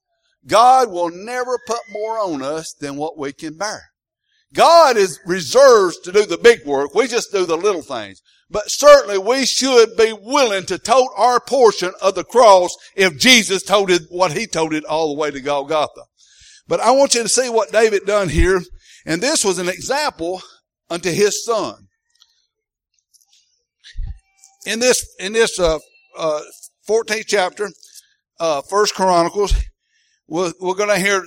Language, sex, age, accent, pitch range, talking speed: English, male, 60-79, American, 180-260 Hz, 160 wpm